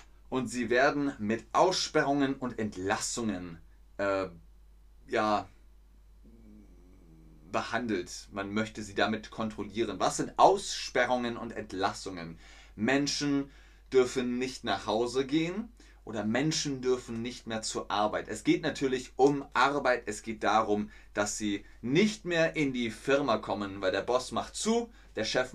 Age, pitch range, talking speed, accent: 30-49, 105-150 Hz, 130 wpm, German